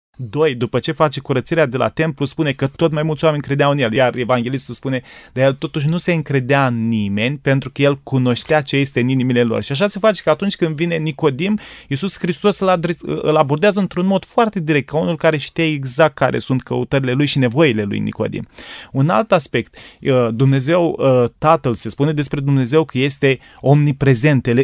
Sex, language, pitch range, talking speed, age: male, Romanian, 130-165 Hz, 195 wpm, 30-49